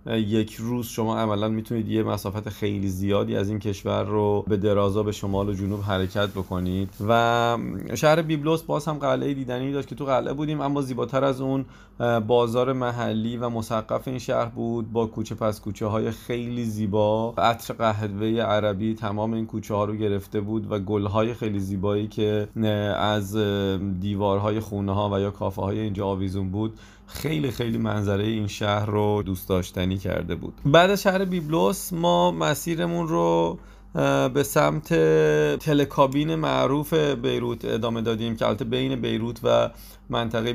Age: 30-49